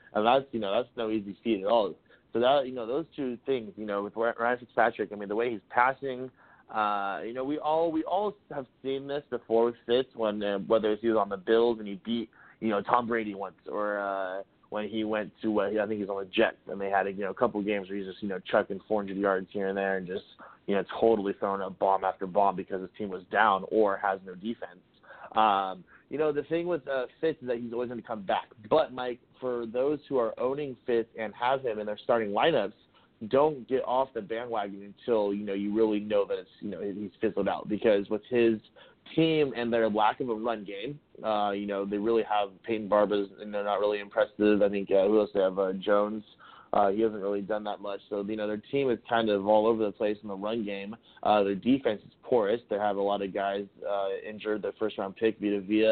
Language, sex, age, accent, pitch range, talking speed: English, male, 30-49, American, 100-120 Hz, 250 wpm